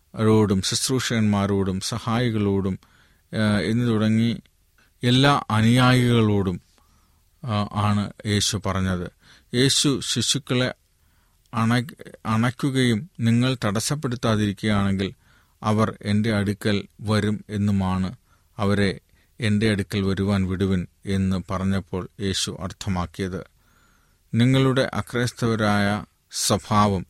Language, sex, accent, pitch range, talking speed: Malayalam, male, native, 95-115 Hz, 70 wpm